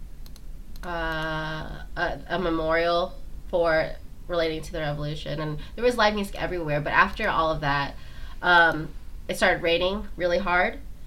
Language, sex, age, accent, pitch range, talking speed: English, female, 20-39, American, 160-195 Hz, 140 wpm